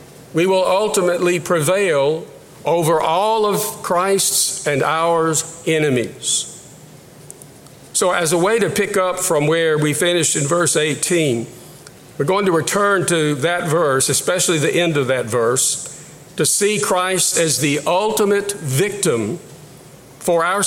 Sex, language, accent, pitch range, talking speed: male, English, American, 150-190 Hz, 135 wpm